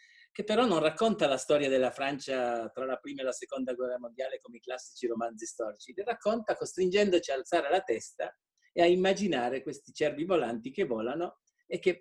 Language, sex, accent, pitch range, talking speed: Italian, male, native, 120-185 Hz, 190 wpm